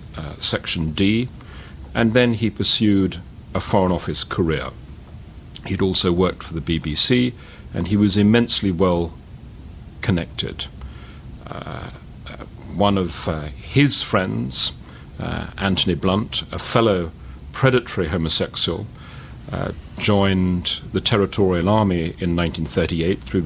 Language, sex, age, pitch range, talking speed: English, male, 40-59, 80-100 Hz, 115 wpm